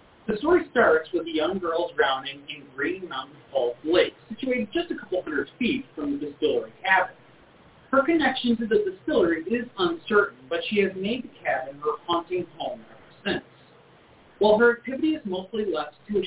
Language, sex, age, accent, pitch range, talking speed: English, male, 40-59, American, 160-265 Hz, 180 wpm